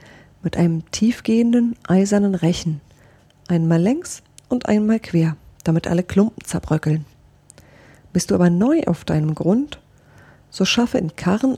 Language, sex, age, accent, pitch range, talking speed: German, female, 40-59, German, 160-230 Hz, 130 wpm